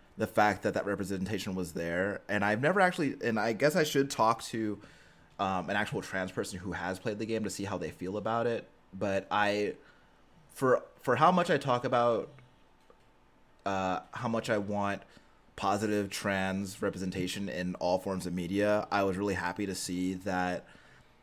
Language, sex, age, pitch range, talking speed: English, male, 30-49, 90-110 Hz, 180 wpm